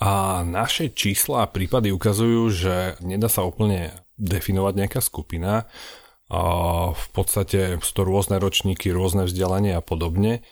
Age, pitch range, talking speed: 30-49, 85-95 Hz, 130 wpm